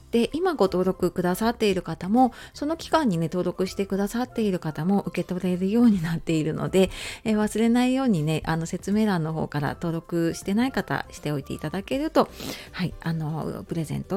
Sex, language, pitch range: female, Japanese, 170-240 Hz